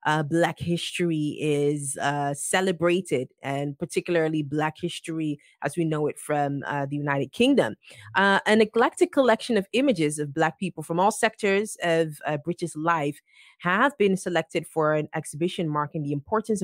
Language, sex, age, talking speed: English, female, 20-39, 160 wpm